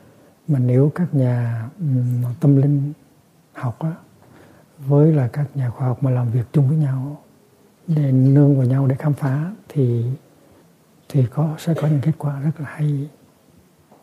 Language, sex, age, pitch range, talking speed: Vietnamese, male, 60-79, 135-160 Hz, 165 wpm